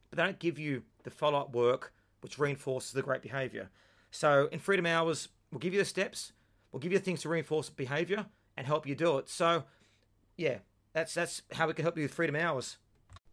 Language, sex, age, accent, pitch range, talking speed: English, male, 30-49, Australian, 130-165 Hz, 210 wpm